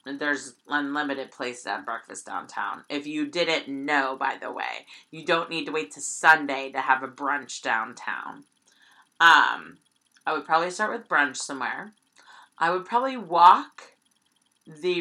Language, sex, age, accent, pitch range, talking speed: English, female, 30-49, American, 145-180 Hz, 155 wpm